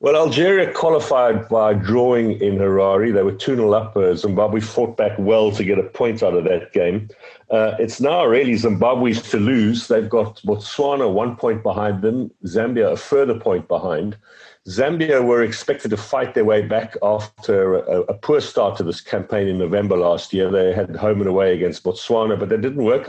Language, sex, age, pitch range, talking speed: English, male, 50-69, 100-120 Hz, 190 wpm